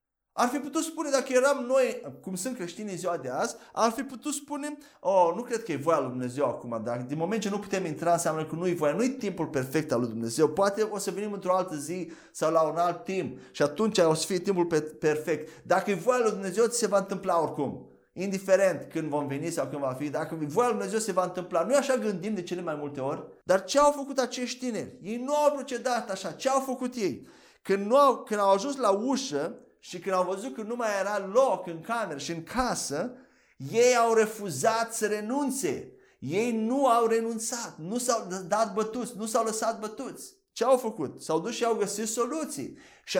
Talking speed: 220 wpm